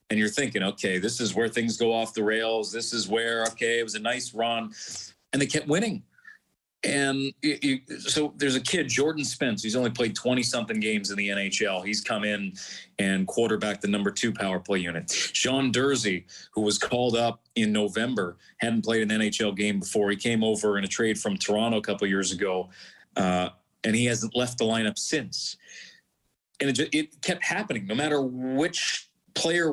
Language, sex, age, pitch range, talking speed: English, male, 30-49, 105-135 Hz, 190 wpm